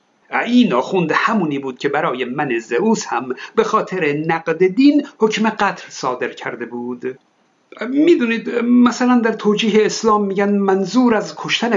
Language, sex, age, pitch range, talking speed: Persian, male, 50-69, 165-225 Hz, 140 wpm